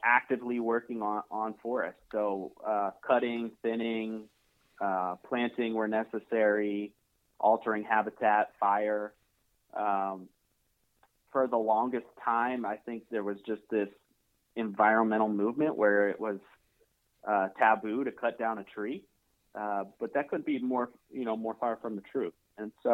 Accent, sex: American, male